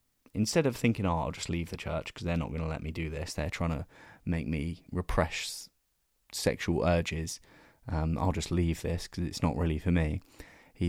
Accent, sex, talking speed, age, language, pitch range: British, male, 205 wpm, 20-39, English, 85-110 Hz